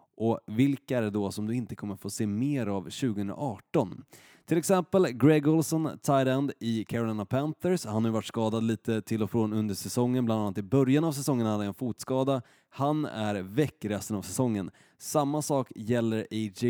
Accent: native